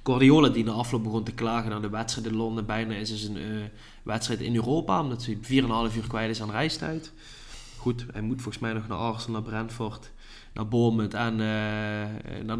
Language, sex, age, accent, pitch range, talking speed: Dutch, male, 20-39, Dutch, 110-130 Hz, 195 wpm